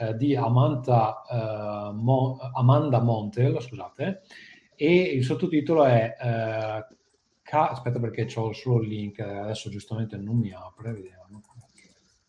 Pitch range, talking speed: 115-140 Hz, 120 wpm